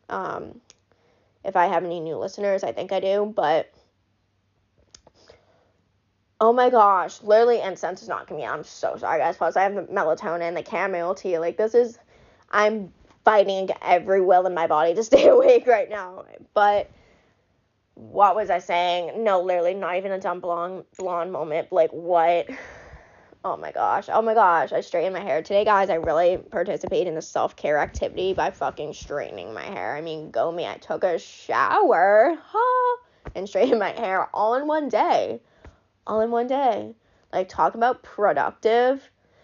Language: English